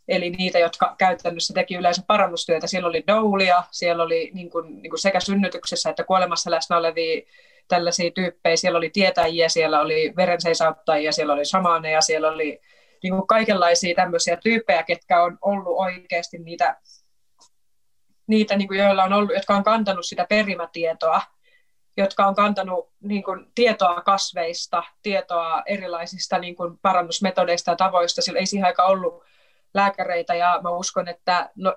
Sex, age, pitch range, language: female, 30-49, 170-190 Hz, Finnish